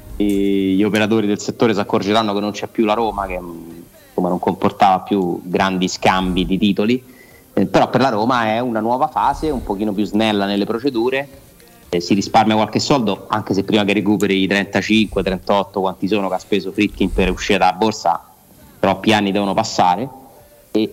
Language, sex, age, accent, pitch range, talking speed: Italian, male, 30-49, native, 100-120 Hz, 185 wpm